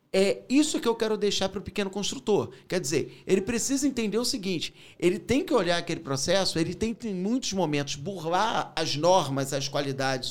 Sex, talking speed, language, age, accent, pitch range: male, 200 wpm, English, 40-59, Brazilian, 150-230 Hz